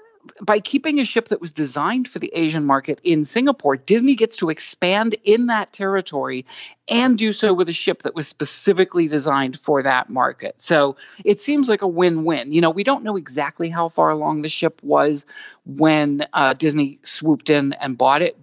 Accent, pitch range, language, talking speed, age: American, 145-200 Hz, English, 195 wpm, 40-59